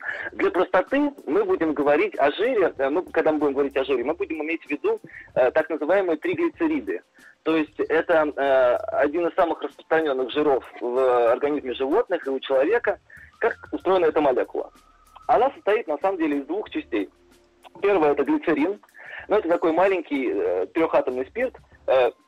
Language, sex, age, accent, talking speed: Russian, male, 30-49, native, 165 wpm